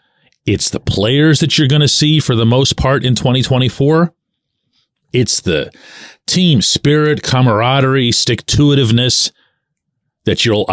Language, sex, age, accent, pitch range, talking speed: English, male, 40-59, American, 105-145 Hz, 125 wpm